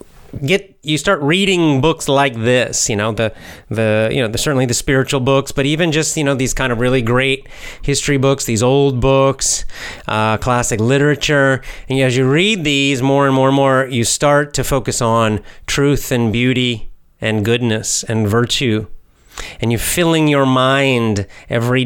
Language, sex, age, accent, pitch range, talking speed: English, male, 30-49, American, 120-150 Hz, 175 wpm